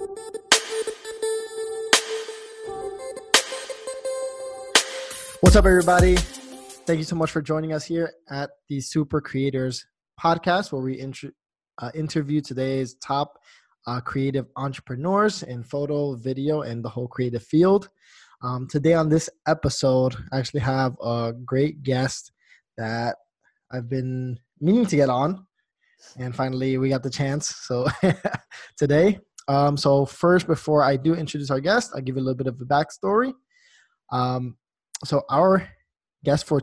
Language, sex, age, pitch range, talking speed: English, male, 20-39, 130-175 Hz, 135 wpm